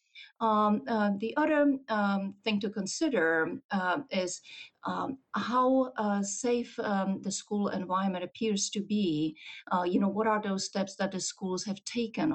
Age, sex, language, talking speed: 50-69, female, English, 160 wpm